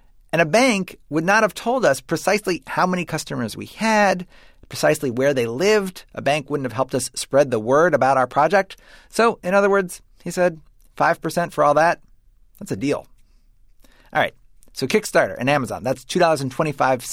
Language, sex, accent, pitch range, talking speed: English, male, American, 125-180 Hz, 195 wpm